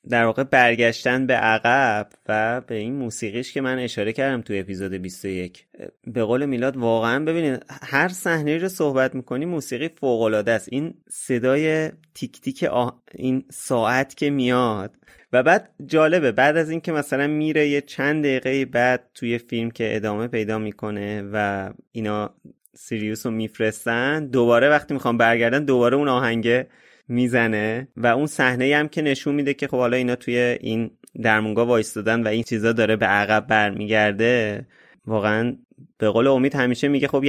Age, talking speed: 30-49, 160 wpm